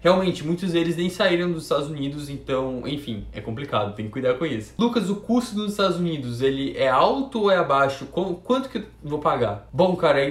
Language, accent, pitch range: Portuguese, Brazilian, 155-200 Hz